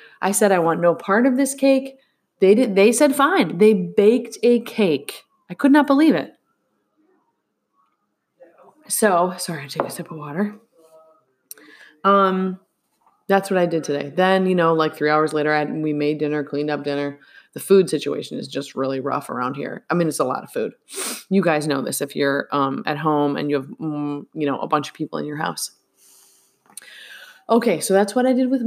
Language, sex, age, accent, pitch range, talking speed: English, female, 20-39, American, 155-220 Hz, 195 wpm